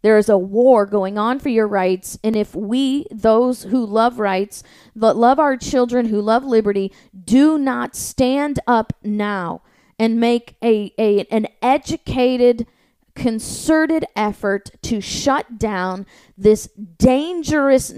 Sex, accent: female, American